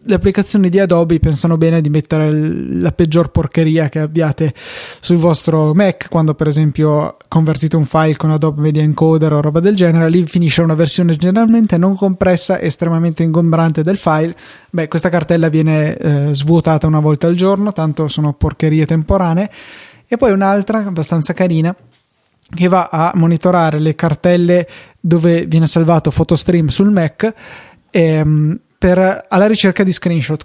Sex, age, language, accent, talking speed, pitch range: male, 20-39, Italian, native, 150 wpm, 155-180 Hz